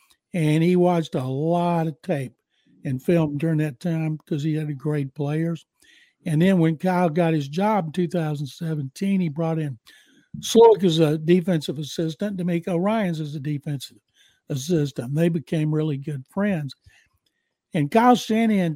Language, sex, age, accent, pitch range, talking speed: English, male, 60-79, American, 145-175 Hz, 155 wpm